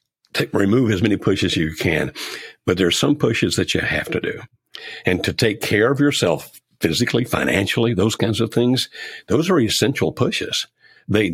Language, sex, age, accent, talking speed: English, male, 60-79, American, 180 wpm